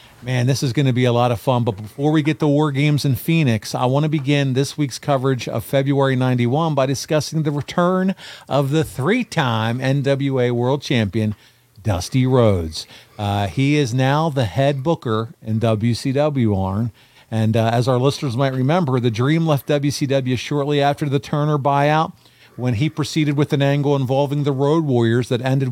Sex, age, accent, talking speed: male, 50-69, American, 185 wpm